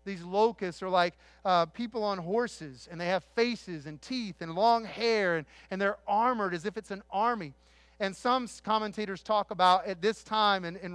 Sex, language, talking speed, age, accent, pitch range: male, English, 195 wpm, 40-59, American, 190-220 Hz